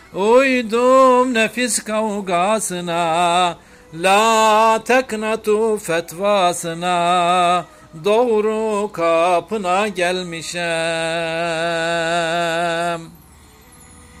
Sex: male